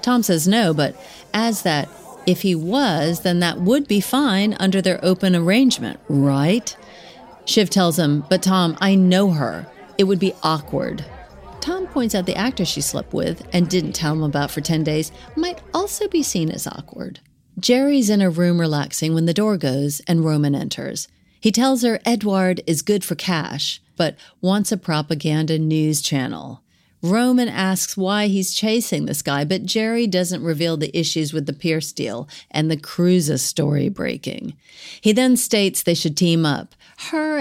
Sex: female